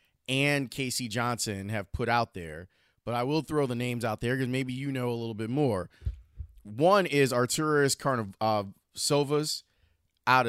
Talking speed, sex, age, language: 165 wpm, male, 30-49, English